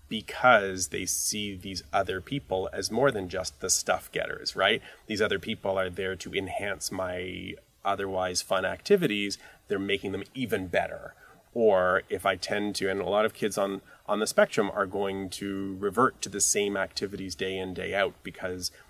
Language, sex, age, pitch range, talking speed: English, male, 30-49, 95-110 Hz, 180 wpm